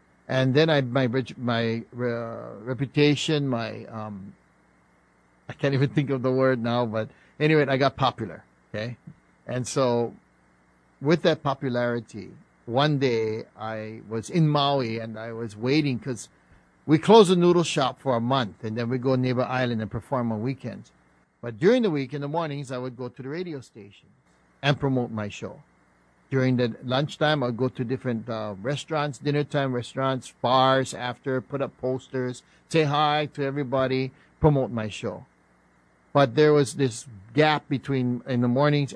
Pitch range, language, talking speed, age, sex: 115-145 Hz, English, 170 wpm, 50-69, male